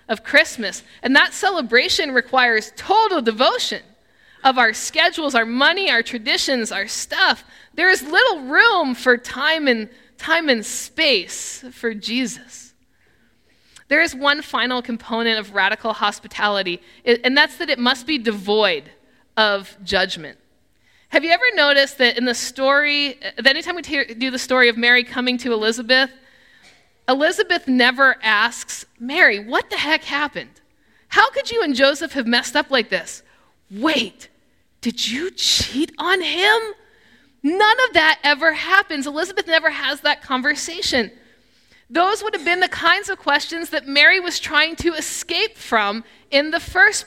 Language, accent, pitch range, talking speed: English, American, 235-330 Hz, 150 wpm